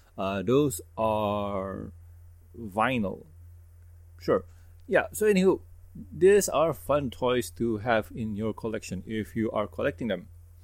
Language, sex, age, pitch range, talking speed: English, male, 30-49, 85-125 Hz, 125 wpm